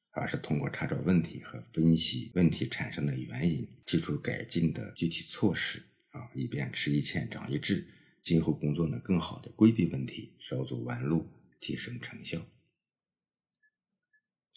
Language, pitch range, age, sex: Chinese, 70-95 Hz, 50-69, male